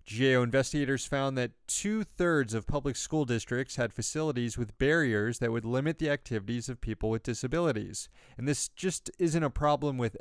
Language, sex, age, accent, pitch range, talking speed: English, male, 30-49, American, 115-145 Hz, 170 wpm